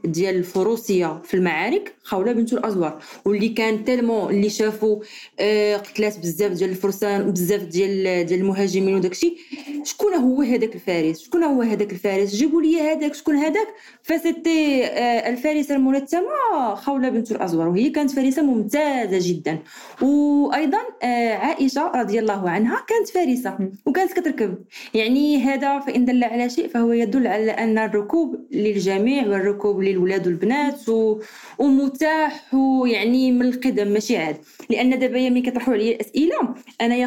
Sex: female